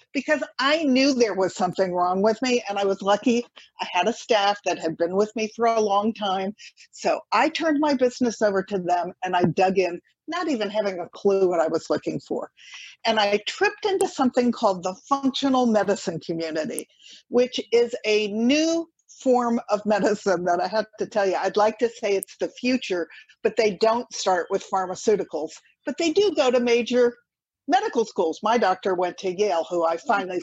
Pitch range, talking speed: 190-260 Hz, 195 wpm